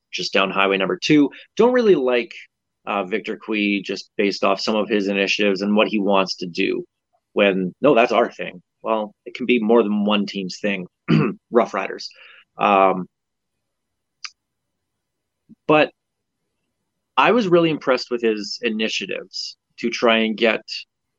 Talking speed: 150 wpm